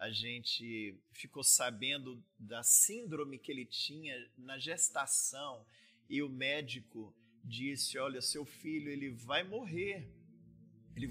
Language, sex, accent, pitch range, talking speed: Portuguese, male, Brazilian, 120-170 Hz, 120 wpm